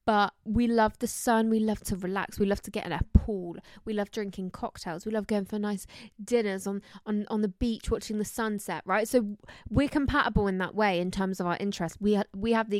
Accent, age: British, 20-39